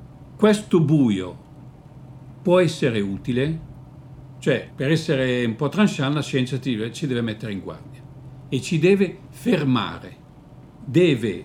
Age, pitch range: 50-69, 120-160 Hz